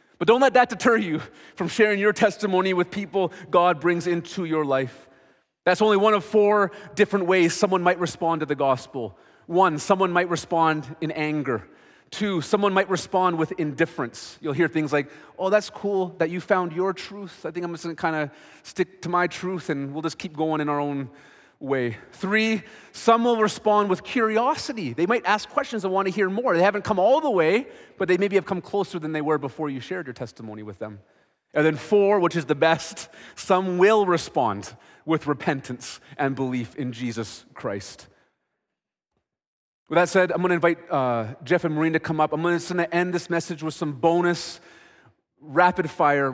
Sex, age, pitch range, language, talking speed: male, 30-49, 150-195 Hz, English, 200 wpm